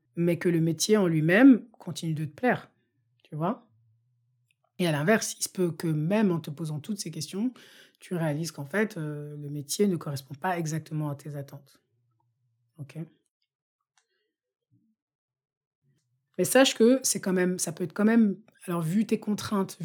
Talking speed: 170 wpm